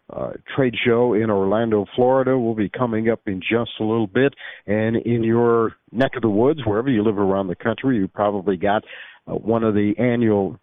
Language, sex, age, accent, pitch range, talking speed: English, male, 50-69, American, 105-130 Hz, 205 wpm